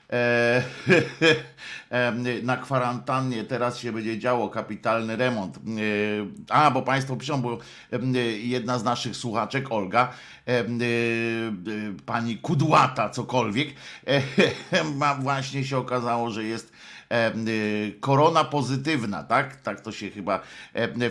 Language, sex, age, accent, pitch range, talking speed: Polish, male, 50-69, native, 115-140 Hz, 115 wpm